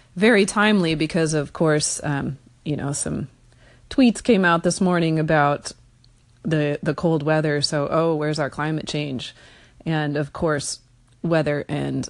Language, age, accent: English, 30-49, American